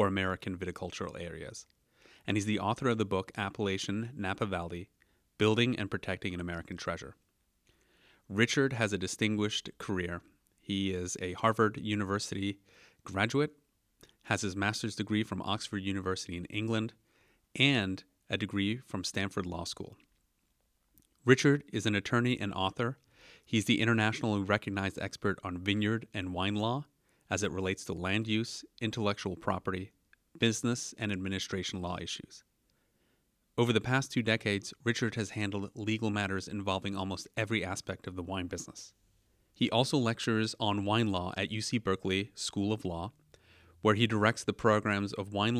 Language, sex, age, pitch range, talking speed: English, male, 30-49, 95-110 Hz, 145 wpm